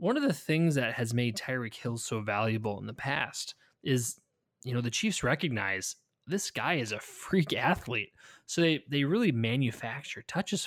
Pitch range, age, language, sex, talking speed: 115-150 Hz, 20-39, English, male, 180 wpm